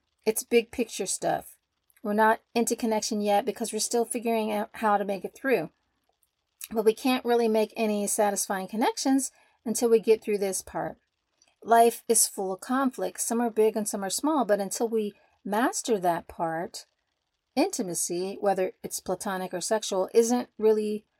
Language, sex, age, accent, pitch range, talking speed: English, female, 40-59, American, 195-230 Hz, 165 wpm